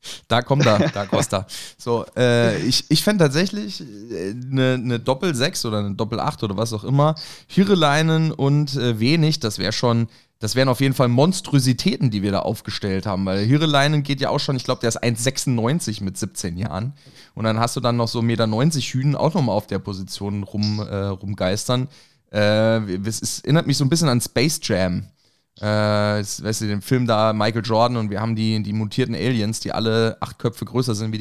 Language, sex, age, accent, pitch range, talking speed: German, male, 20-39, German, 105-135 Hz, 210 wpm